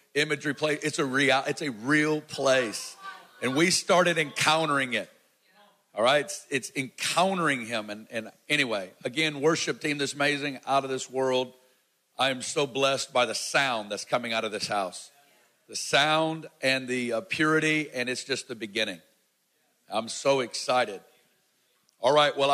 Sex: male